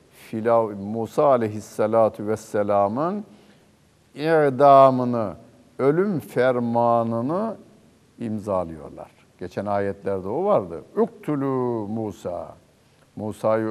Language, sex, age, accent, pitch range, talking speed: Turkish, male, 60-79, native, 100-140 Hz, 65 wpm